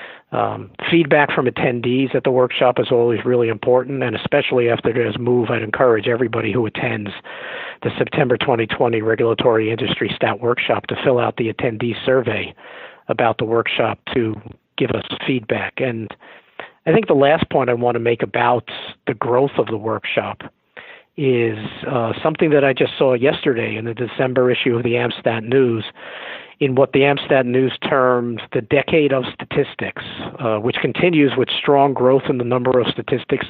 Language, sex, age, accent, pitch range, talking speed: English, male, 50-69, American, 120-140 Hz, 170 wpm